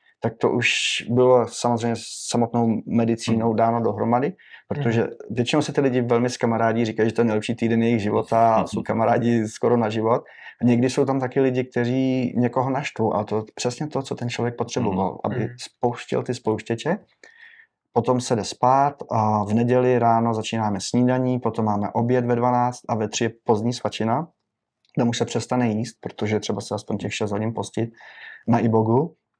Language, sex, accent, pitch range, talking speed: Czech, male, native, 110-120 Hz, 180 wpm